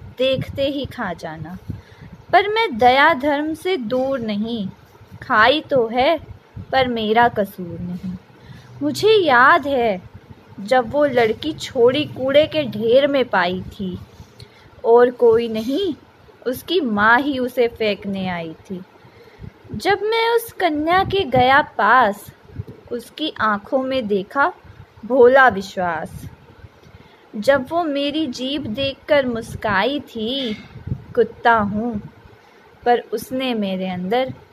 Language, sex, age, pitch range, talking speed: Hindi, female, 20-39, 220-335 Hz, 115 wpm